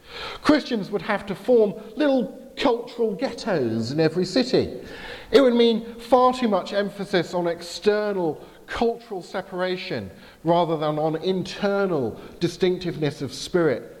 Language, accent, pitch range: English, British, 150-225 Hz